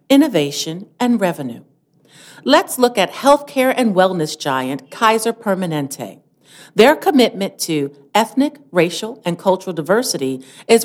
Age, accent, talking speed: 50-69, American, 115 wpm